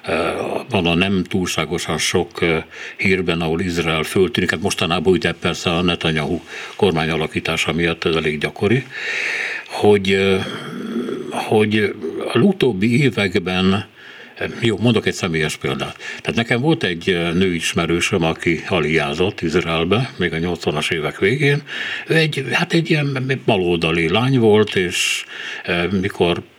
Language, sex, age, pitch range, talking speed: Hungarian, male, 60-79, 85-125 Hz, 115 wpm